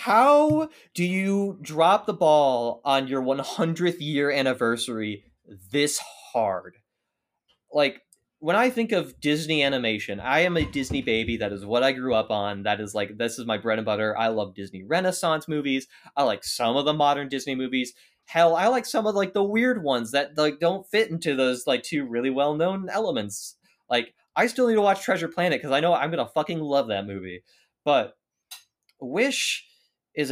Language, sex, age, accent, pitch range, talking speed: English, male, 20-39, American, 120-170 Hz, 190 wpm